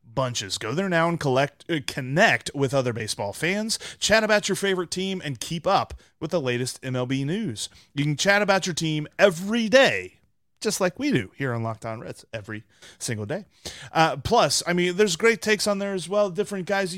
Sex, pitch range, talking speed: male, 120-185 Hz, 200 wpm